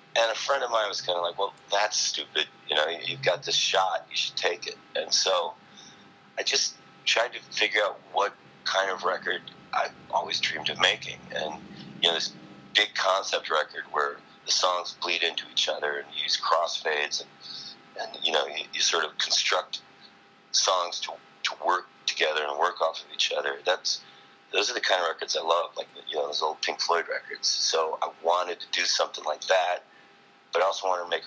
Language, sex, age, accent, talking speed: English, male, 30-49, American, 205 wpm